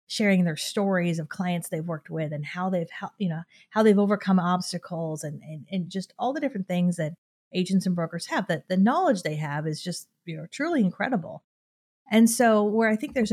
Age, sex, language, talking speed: 40-59, female, English, 215 wpm